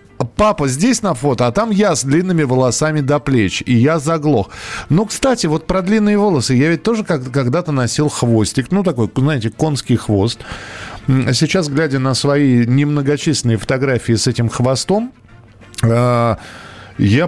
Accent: native